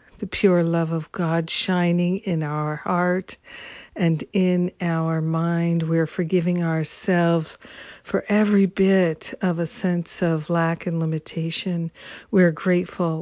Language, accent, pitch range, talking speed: English, American, 165-185 Hz, 125 wpm